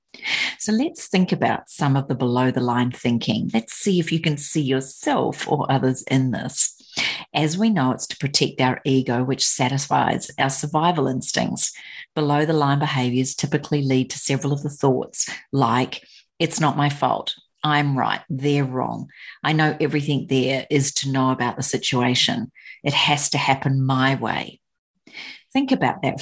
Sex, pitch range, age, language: female, 130-155 Hz, 40-59, English